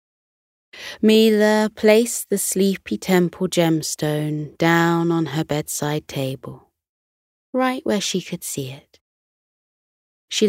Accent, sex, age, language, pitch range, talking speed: British, female, 30-49, English, 150-195 Hz, 105 wpm